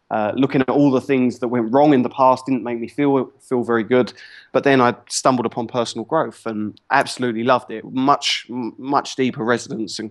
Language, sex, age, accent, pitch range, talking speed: English, male, 20-39, British, 115-135 Hz, 215 wpm